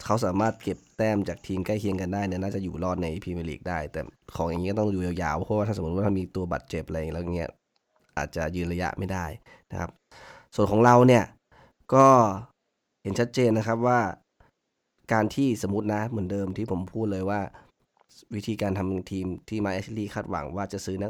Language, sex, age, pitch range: Thai, male, 20-39, 90-110 Hz